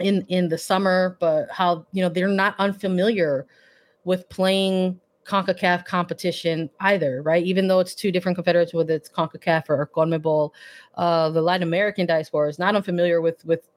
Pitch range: 165-195 Hz